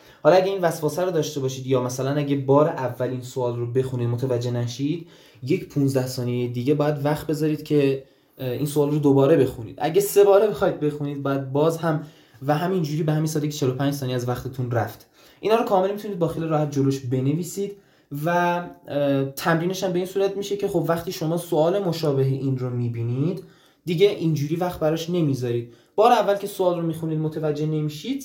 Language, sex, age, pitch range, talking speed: Persian, male, 20-39, 135-180 Hz, 185 wpm